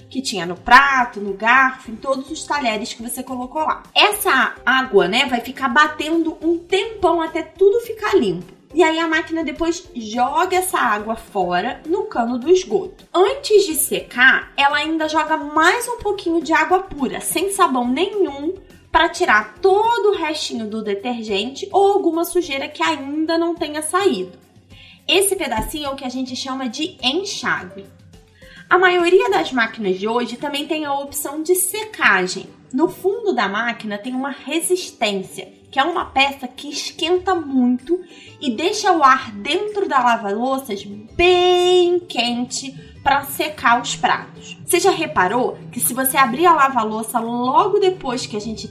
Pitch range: 245-355 Hz